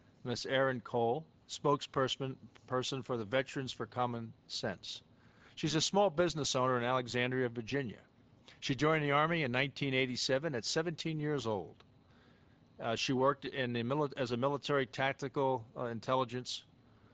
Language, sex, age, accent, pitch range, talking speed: English, male, 50-69, American, 120-140 Hz, 135 wpm